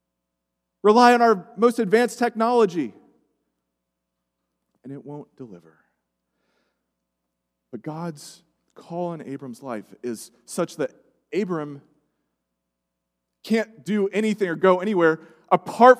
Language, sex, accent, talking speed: English, male, American, 100 wpm